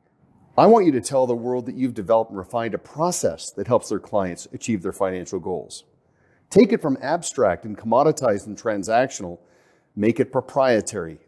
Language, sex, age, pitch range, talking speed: English, male, 40-59, 110-145 Hz, 175 wpm